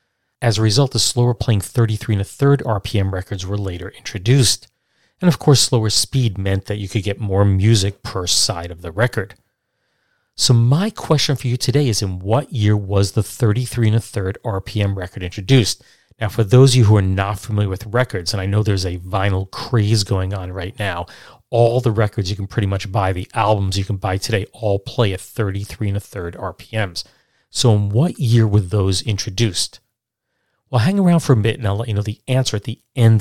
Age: 40-59